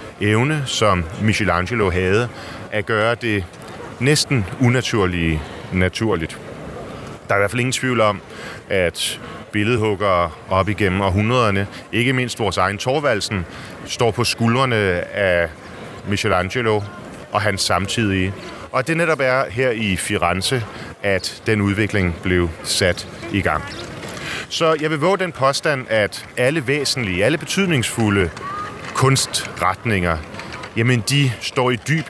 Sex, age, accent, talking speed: male, 30-49, native, 125 wpm